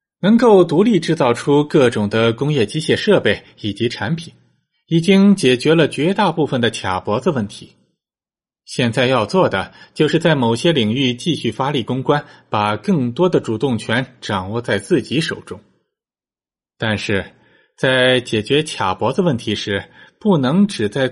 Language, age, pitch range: Chinese, 20-39, 110-155 Hz